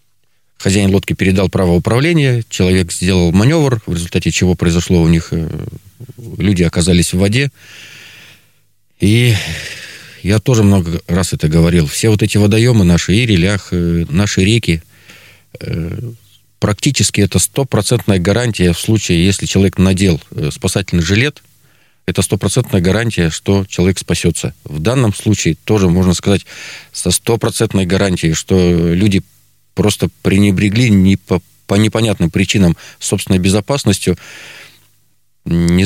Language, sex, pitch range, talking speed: Russian, male, 90-110 Hz, 115 wpm